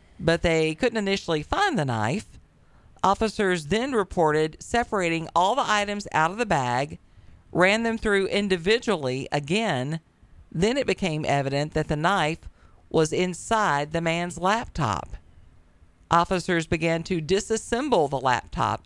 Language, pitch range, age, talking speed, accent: English, 115-180 Hz, 50-69, 130 wpm, American